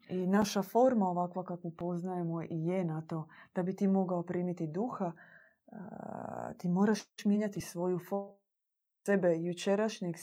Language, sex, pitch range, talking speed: Croatian, female, 165-195 Hz, 145 wpm